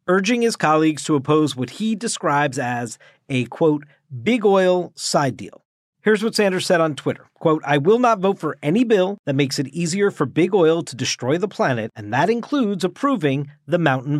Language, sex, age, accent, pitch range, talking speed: English, male, 40-59, American, 135-190 Hz, 195 wpm